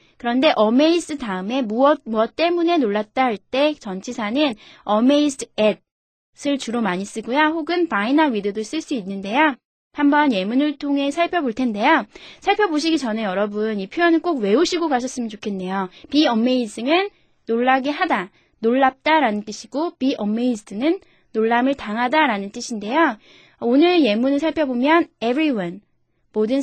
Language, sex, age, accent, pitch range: Korean, female, 20-39, native, 220-305 Hz